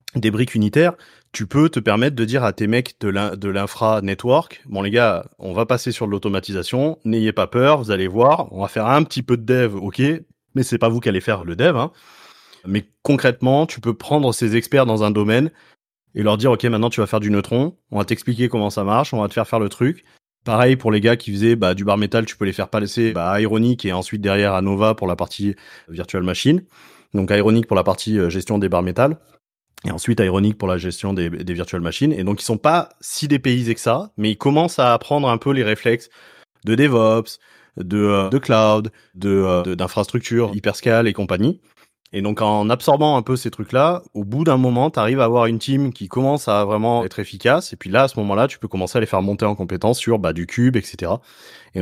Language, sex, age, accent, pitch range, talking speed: French, male, 30-49, French, 100-125 Hz, 240 wpm